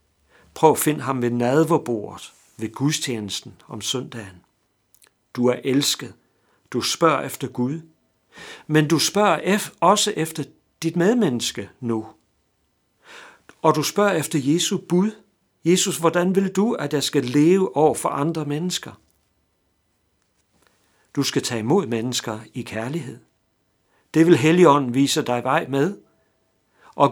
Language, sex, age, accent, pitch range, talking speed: Danish, male, 60-79, native, 110-160 Hz, 130 wpm